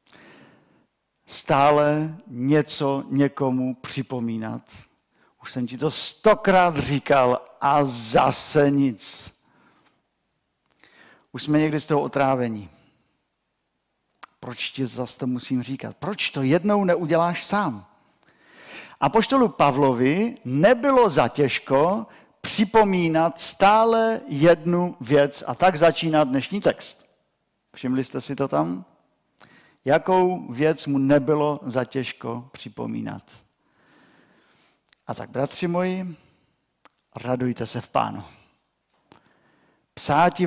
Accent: native